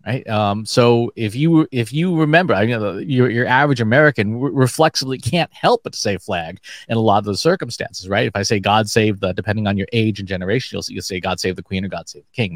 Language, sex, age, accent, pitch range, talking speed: English, male, 30-49, American, 105-140 Hz, 260 wpm